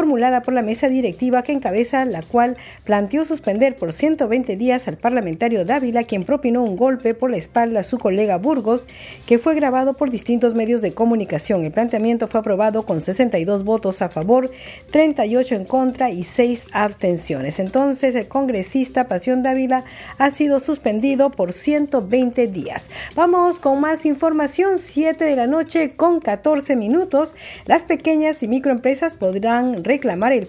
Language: Spanish